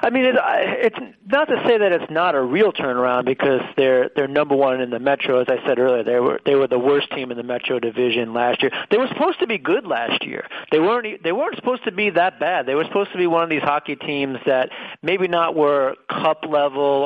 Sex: male